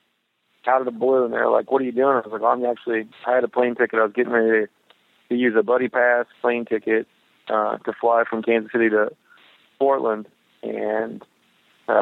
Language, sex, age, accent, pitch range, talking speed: English, male, 30-49, American, 115-130 Hz, 210 wpm